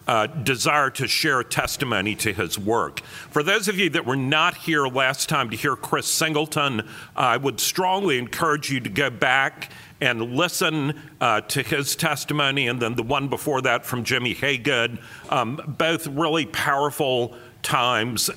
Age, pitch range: 50-69, 115-150 Hz